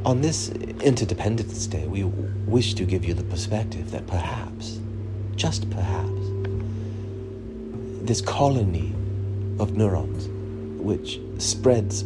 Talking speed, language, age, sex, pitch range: 105 wpm, English, 40-59, male, 100-110 Hz